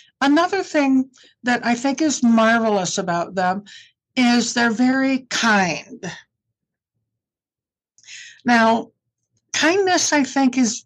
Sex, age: female, 60-79